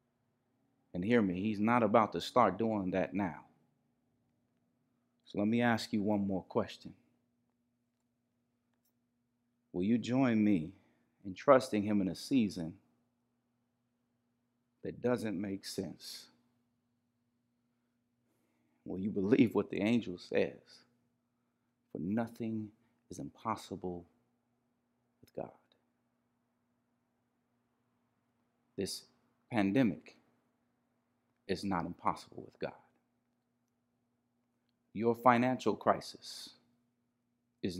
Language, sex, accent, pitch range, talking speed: English, male, American, 105-120 Hz, 90 wpm